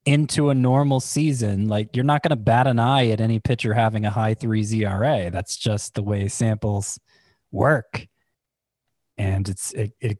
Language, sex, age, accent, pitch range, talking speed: English, male, 20-39, American, 110-130 Hz, 175 wpm